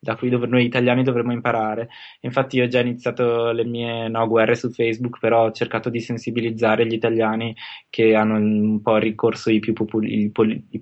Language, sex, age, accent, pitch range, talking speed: Italian, male, 20-39, native, 105-115 Hz, 180 wpm